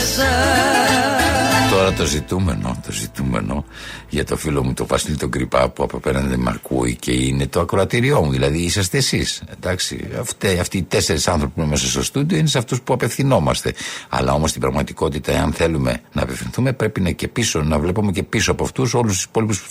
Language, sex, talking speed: Greek, male, 185 wpm